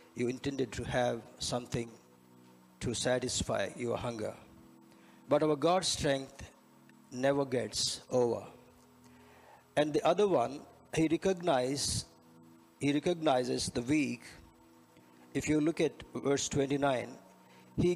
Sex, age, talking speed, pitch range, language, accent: male, 50-69, 110 wpm, 95-155 Hz, Telugu, native